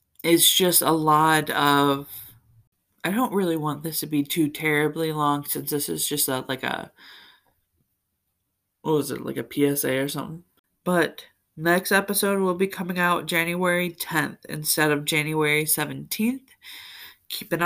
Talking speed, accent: 150 wpm, American